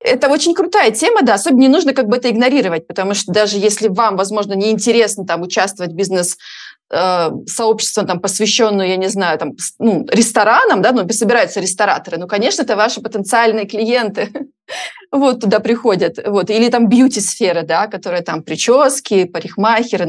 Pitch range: 195-245 Hz